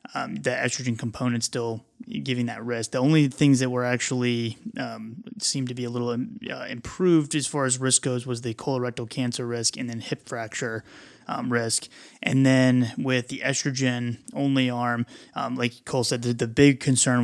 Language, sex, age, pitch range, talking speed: English, male, 20-39, 120-135 Hz, 185 wpm